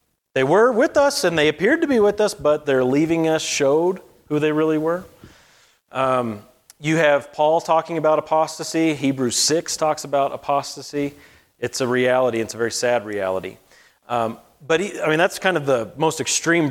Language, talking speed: English, 180 wpm